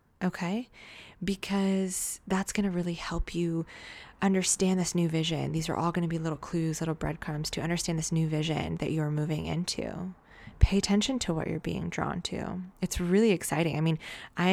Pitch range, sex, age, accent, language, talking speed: 155-190 Hz, female, 20-39, American, English, 185 wpm